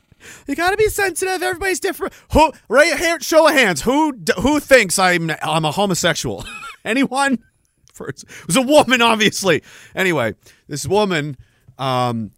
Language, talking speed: English, 140 wpm